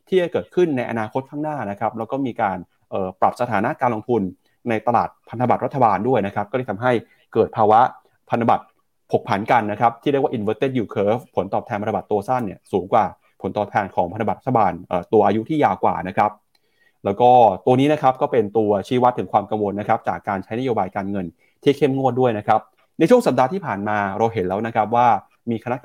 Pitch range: 105-125 Hz